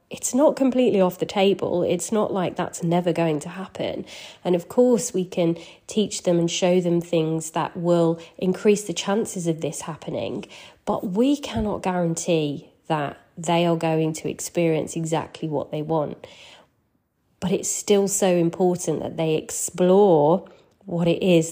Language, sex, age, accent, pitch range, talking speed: English, female, 30-49, British, 165-200 Hz, 160 wpm